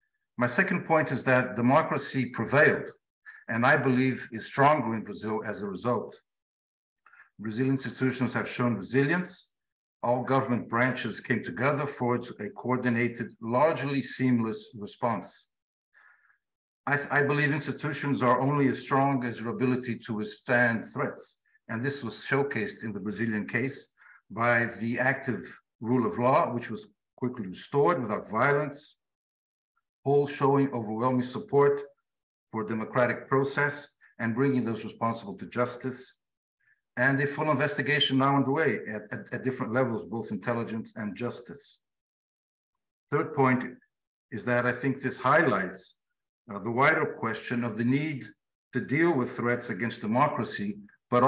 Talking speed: 135 wpm